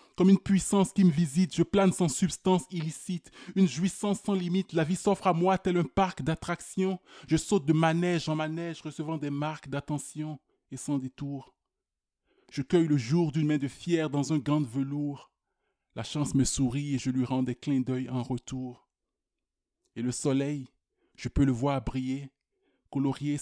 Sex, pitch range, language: male, 125-155 Hz, French